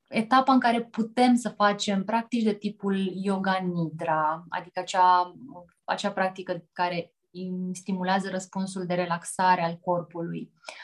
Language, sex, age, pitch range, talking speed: Romanian, female, 20-39, 180-220 Hz, 120 wpm